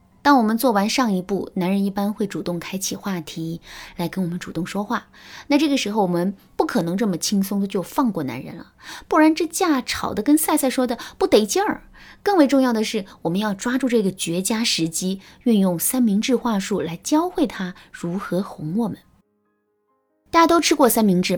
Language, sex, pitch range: Chinese, female, 190-275 Hz